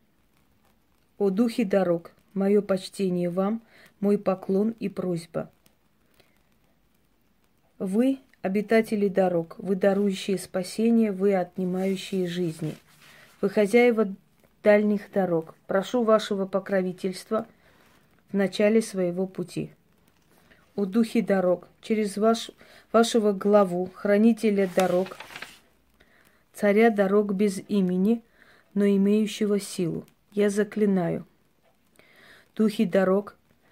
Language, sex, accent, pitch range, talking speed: Russian, female, native, 185-215 Hz, 90 wpm